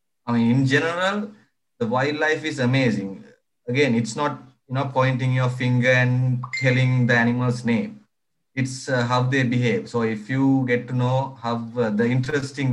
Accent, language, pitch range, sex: Indian, English, 120-150 Hz, male